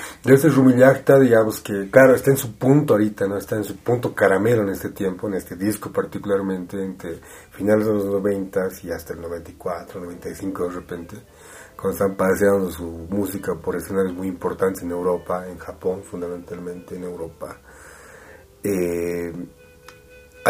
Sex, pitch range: male, 95-110 Hz